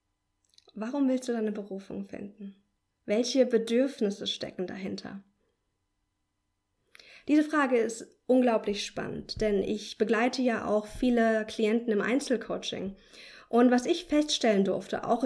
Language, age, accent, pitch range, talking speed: German, 20-39, German, 205-250 Hz, 120 wpm